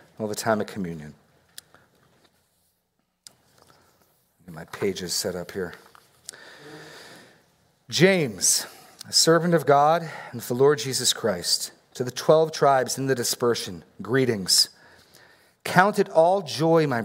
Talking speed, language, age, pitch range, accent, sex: 120 wpm, English, 40-59, 115-165 Hz, American, male